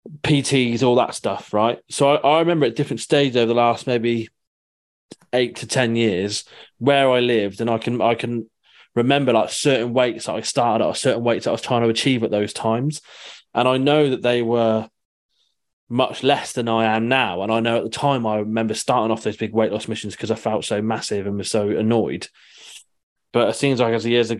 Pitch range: 110-125 Hz